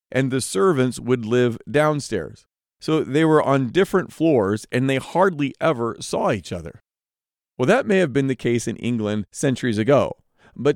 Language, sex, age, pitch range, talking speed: English, male, 40-59, 115-180 Hz, 175 wpm